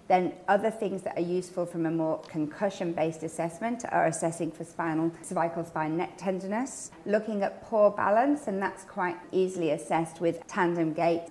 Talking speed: 165 wpm